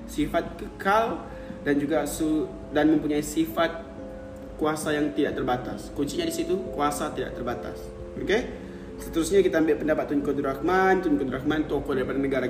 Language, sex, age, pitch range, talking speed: Malay, male, 20-39, 135-165 Hz, 155 wpm